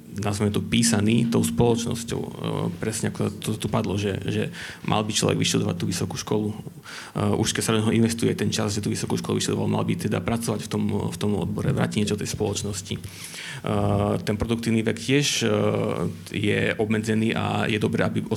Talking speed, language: 175 wpm, Slovak